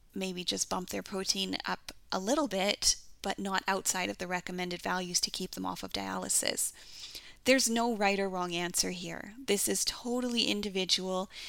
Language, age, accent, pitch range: English, 10-29, American, 195-250 Hz